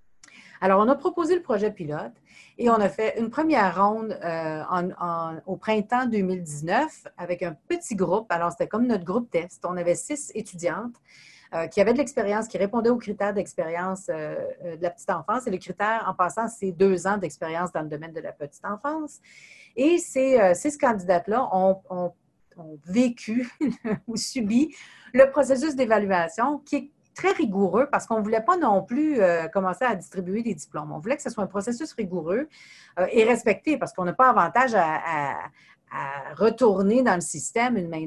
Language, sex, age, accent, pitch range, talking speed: French, female, 40-59, Canadian, 180-245 Hz, 190 wpm